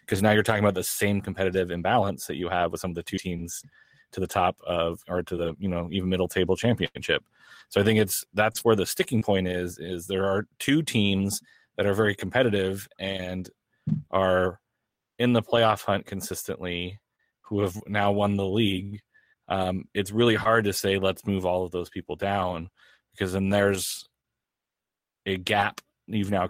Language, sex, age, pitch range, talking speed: English, male, 30-49, 90-105 Hz, 190 wpm